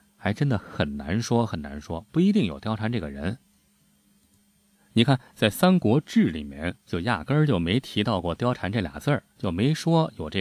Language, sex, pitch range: Chinese, male, 90-130 Hz